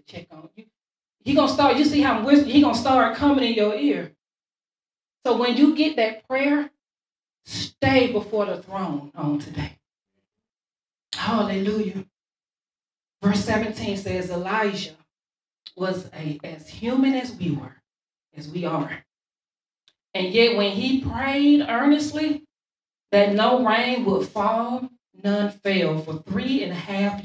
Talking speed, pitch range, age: 140 wpm, 180-240 Hz, 40-59